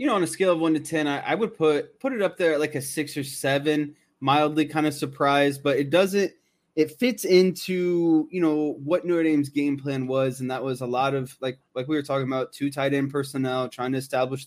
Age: 20-39